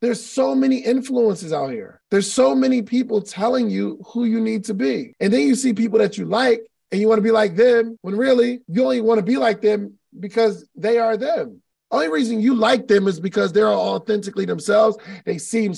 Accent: American